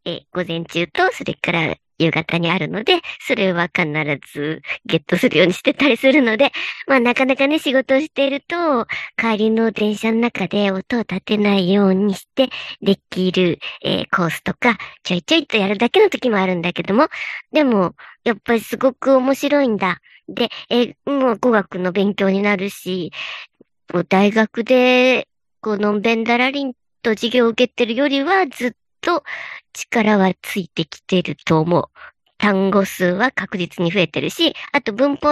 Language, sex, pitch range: Japanese, male, 185-260 Hz